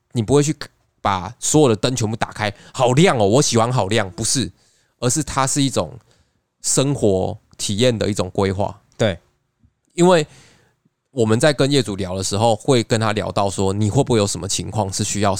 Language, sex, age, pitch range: Chinese, male, 20-39, 100-125 Hz